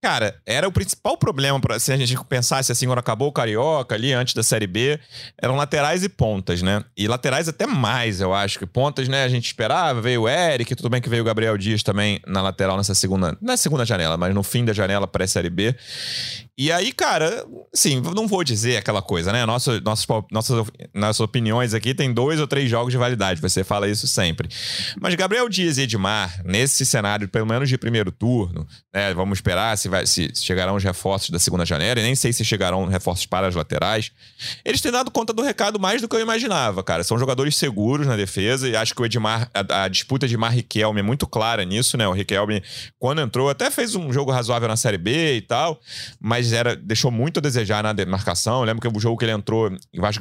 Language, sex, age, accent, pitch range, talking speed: Portuguese, male, 30-49, Brazilian, 105-135 Hz, 215 wpm